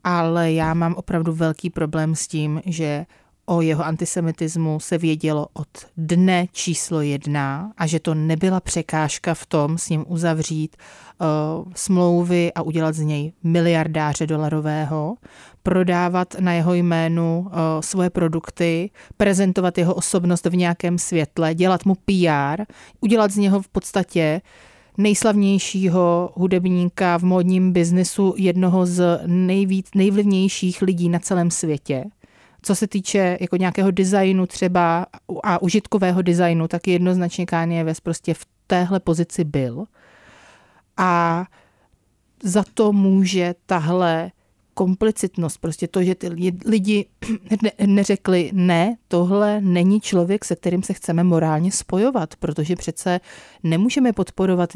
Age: 30-49